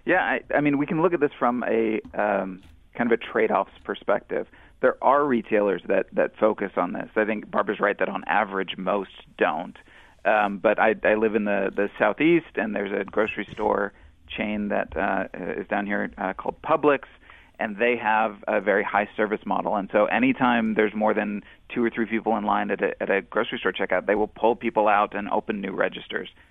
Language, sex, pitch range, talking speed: English, male, 100-115 Hz, 210 wpm